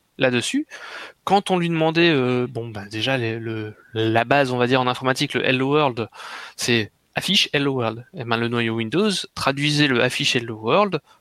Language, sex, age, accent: French, male, 20-39, French